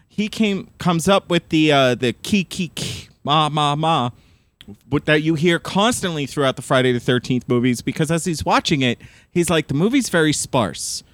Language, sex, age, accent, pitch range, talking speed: English, male, 30-49, American, 120-155 Hz, 190 wpm